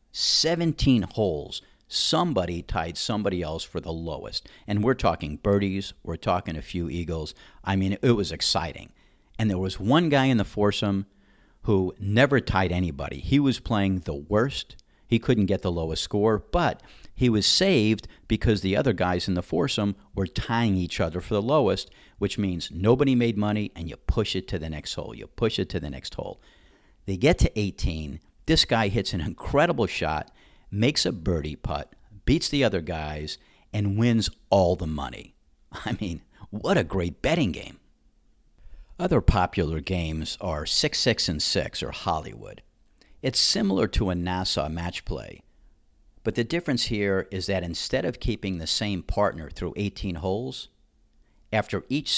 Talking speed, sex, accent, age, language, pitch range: 165 wpm, male, American, 50-69, English, 85-110 Hz